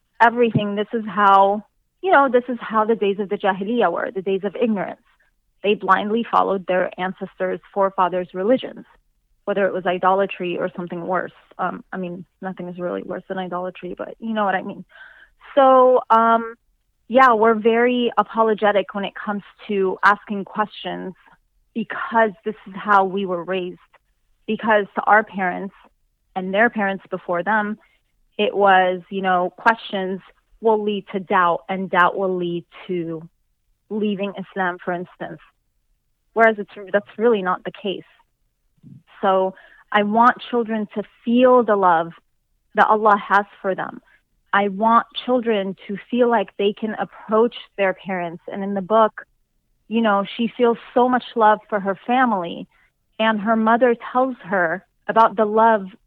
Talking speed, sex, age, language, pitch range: 155 wpm, female, 30-49, English, 190-225 Hz